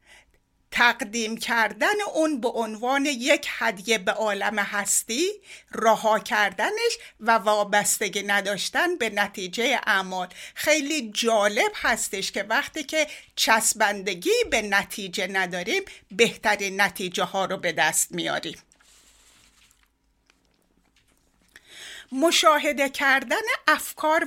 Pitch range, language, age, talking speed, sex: 210-310 Hz, Persian, 60-79, 95 wpm, female